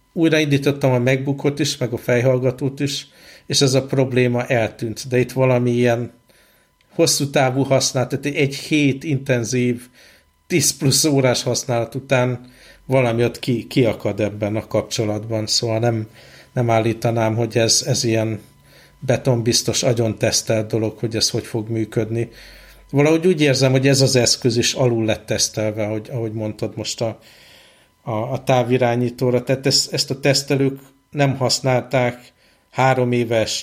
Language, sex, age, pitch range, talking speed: Hungarian, male, 60-79, 110-130 Hz, 140 wpm